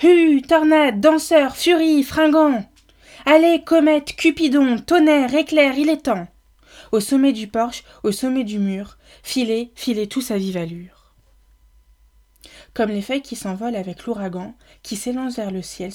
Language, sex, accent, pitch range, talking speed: French, female, French, 185-245 Hz, 145 wpm